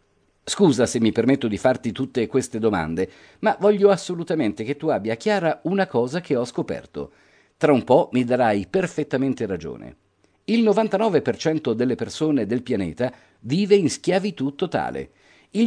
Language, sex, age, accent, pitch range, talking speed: Italian, male, 50-69, native, 120-180 Hz, 150 wpm